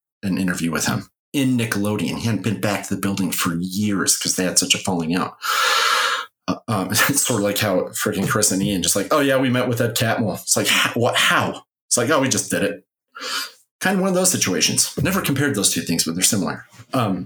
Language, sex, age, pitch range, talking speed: English, male, 30-49, 95-130 Hz, 240 wpm